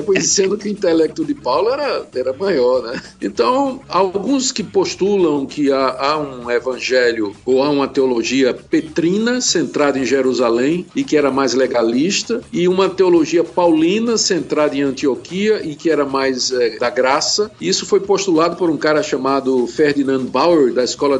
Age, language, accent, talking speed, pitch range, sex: 50-69, Portuguese, Brazilian, 165 wpm, 135-205 Hz, male